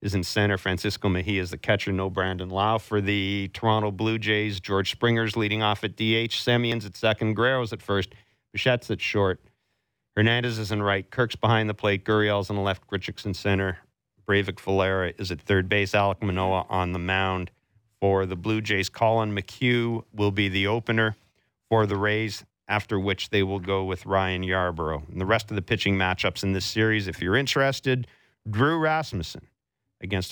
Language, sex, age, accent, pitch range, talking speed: English, male, 40-59, American, 95-110 Hz, 185 wpm